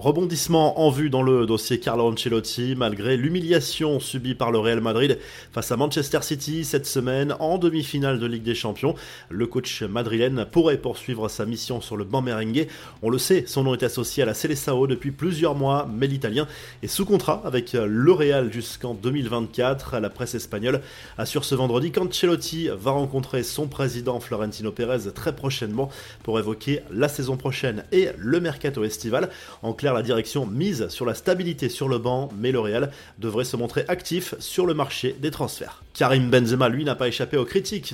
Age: 30-49